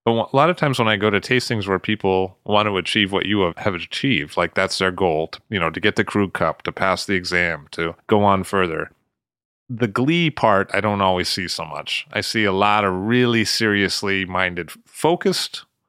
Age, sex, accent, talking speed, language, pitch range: 30-49, male, American, 220 wpm, English, 100-140 Hz